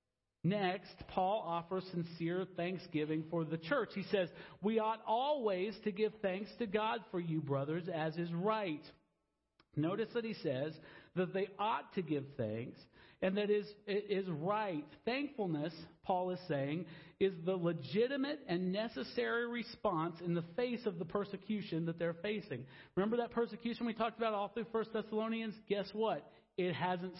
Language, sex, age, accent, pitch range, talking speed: English, male, 50-69, American, 170-225 Hz, 160 wpm